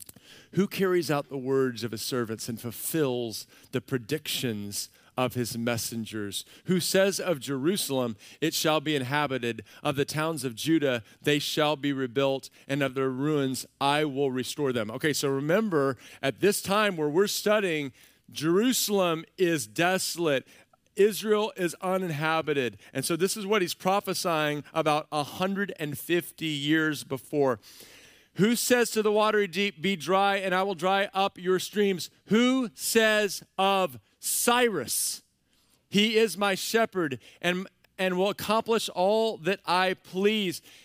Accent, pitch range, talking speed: American, 140-230 Hz, 140 wpm